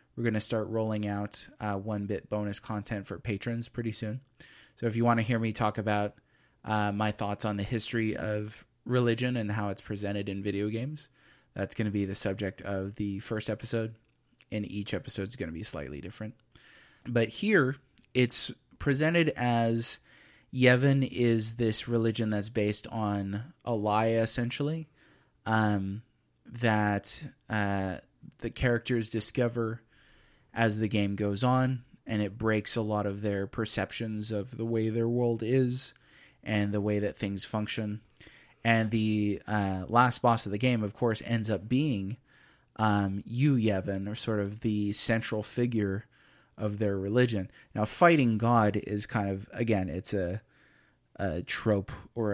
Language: English